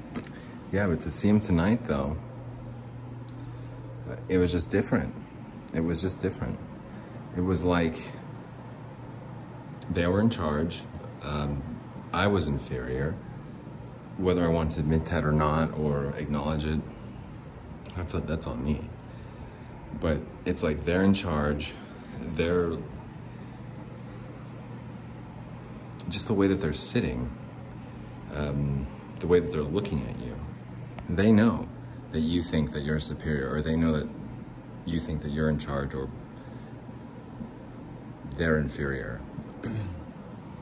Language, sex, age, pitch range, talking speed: English, male, 30-49, 75-100 Hz, 125 wpm